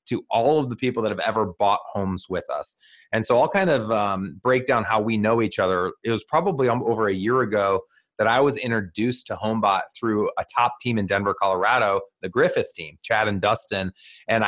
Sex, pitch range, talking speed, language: male, 105-125 Hz, 215 wpm, English